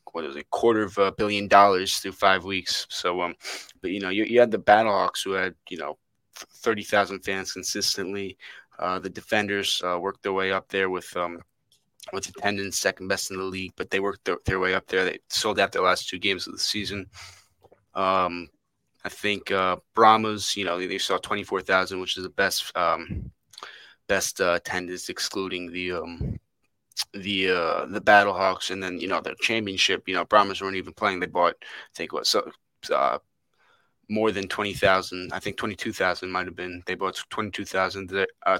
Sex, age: male, 20-39